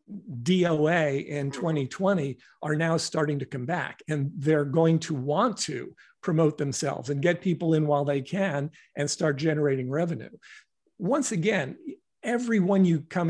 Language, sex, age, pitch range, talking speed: English, male, 50-69, 150-185 Hz, 150 wpm